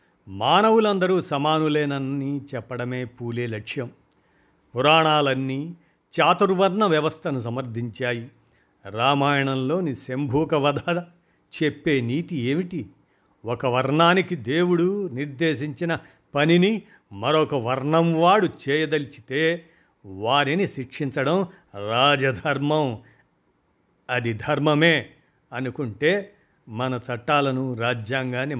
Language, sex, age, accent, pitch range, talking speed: Telugu, male, 50-69, native, 125-160 Hz, 65 wpm